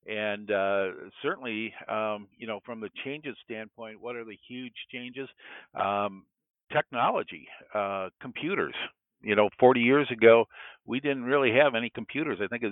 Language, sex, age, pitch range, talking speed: English, male, 60-79, 100-115 Hz, 155 wpm